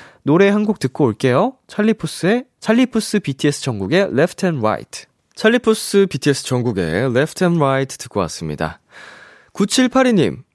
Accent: native